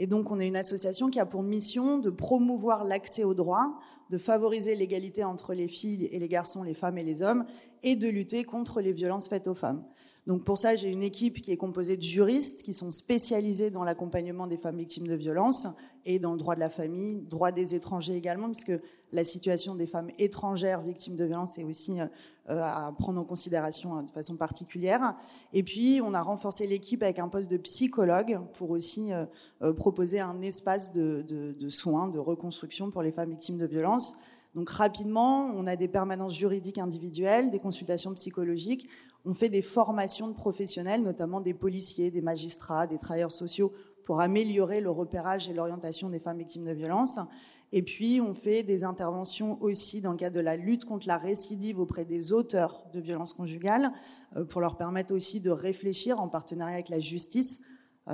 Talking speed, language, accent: 190 wpm, French, French